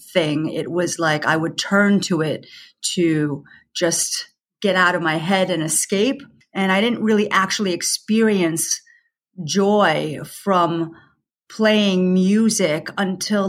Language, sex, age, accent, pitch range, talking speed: English, female, 40-59, American, 180-220 Hz, 130 wpm